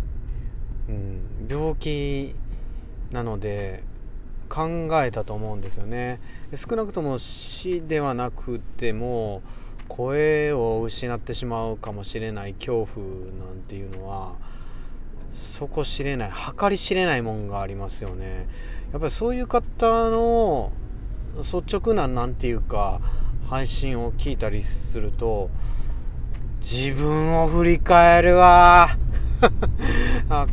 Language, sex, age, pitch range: Japanese, male, 40-59, 100-140 Hz